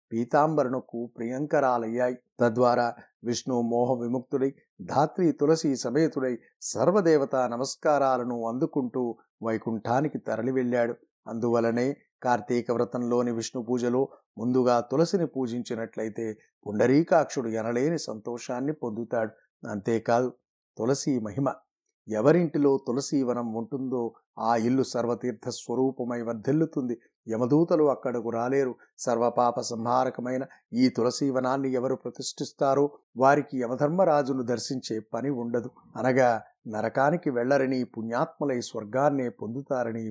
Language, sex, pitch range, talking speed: Telugu, male, 120-135 Hz, 85 wpm